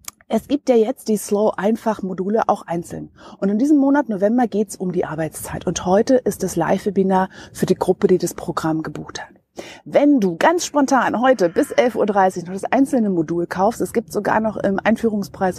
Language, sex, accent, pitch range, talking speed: German, female, German, 180-215 Hz, 195 wpm